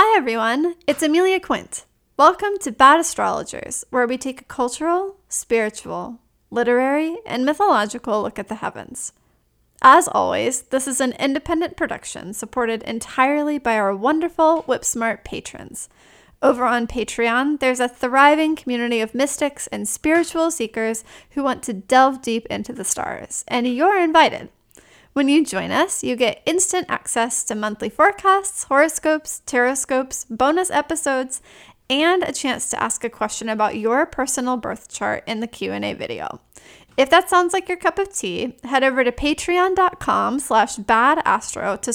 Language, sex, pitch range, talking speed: English, female, 240-320 Hz, 150 wpm